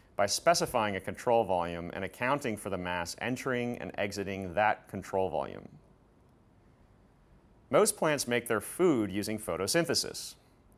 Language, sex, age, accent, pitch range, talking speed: English, male, 30-49, American, 95-125 Hz, 130 wpm